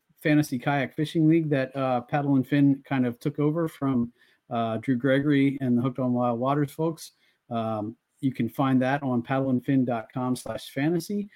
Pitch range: 120-150 Hz